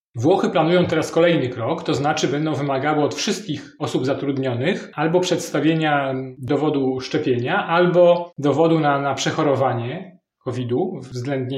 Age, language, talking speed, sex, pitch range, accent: 30-49, Polish, 125 wpm, male, 140-170 Hz, native